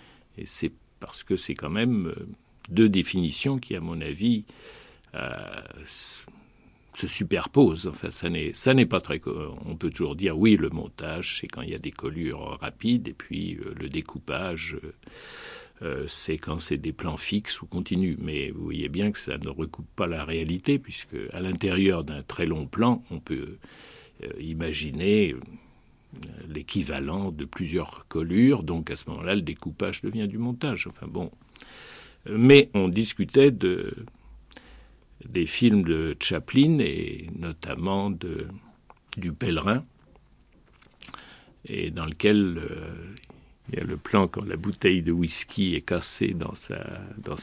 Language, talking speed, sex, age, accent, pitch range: French, 155 wpm, male, 60-79, French, 80-105 Hz